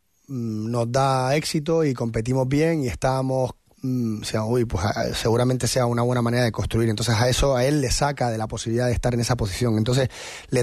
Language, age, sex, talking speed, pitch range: Spanish, 30-49, male, 200 wpm, 110-135 Hz